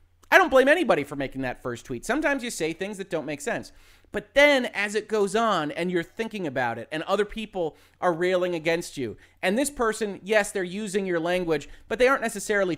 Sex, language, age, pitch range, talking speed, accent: male, English, 30-49, 150-215 Hz, 220 wpm, American